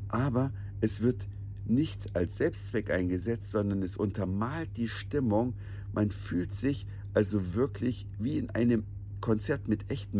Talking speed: 135 wpm